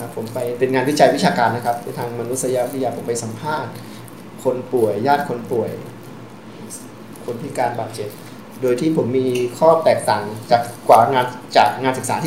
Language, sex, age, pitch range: Thai, male, 20-39, 120-140 Hz